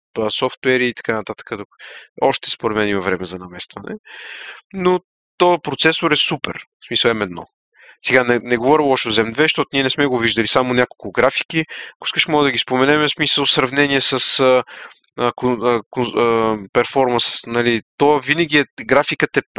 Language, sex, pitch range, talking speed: Bulgarian, male, 110-140 Hz, 170 wpm